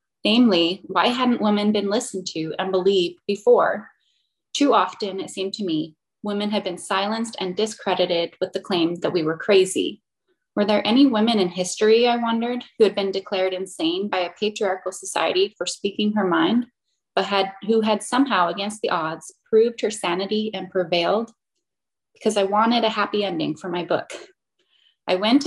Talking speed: 175 wpm